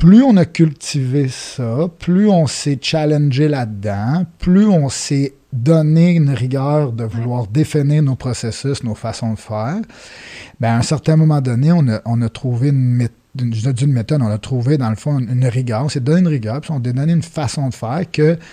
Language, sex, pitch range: French, male, 120-155 Hz